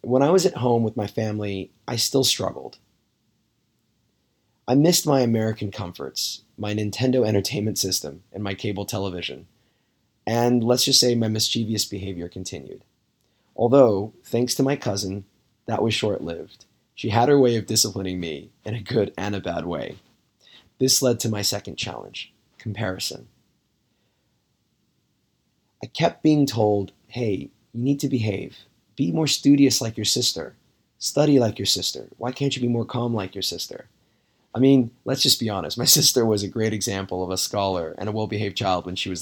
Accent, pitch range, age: American, 100-125 Hz, 20-39